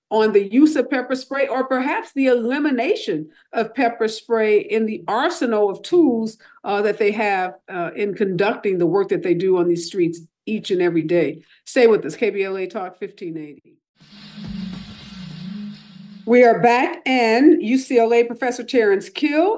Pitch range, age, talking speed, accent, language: 210-300 Hz, 50-69, 155 wpm, American, English